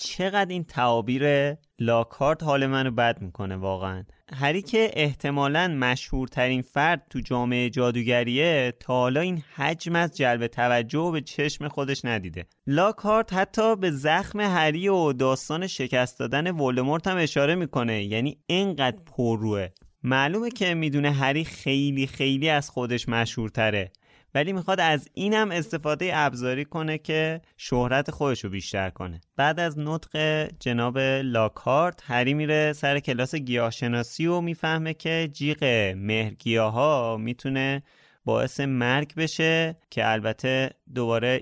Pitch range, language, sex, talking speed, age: 115-155 Hz, Persian, male, 130 wpm, 20-39